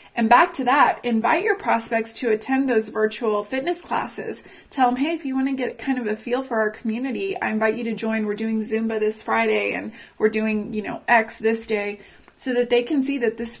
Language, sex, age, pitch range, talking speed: English, female, 30-49, 215-245 Hz, 235 wpm